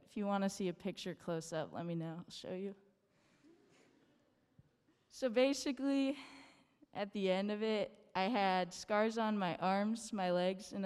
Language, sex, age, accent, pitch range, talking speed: English, female, 10-29, American, 180-220 Hz, 165 wpm